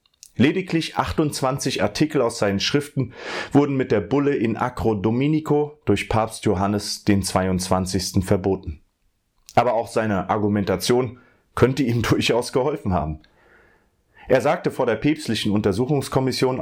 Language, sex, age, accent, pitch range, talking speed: German, male, 30-49, German, 95-130 Hz, 125 wpm